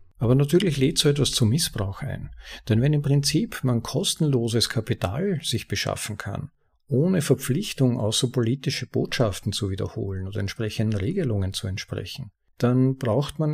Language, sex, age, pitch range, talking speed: German, male, 50-69, 110-140 Hz, 145 wpm